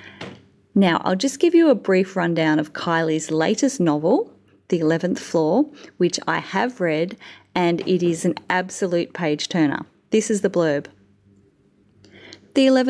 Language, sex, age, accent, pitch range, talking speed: English, female, 30-49, Australian, 160-200 Hz, 140 wpm